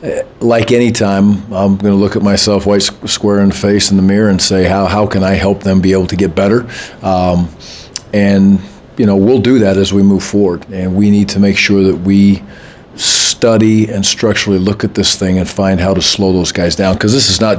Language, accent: English, American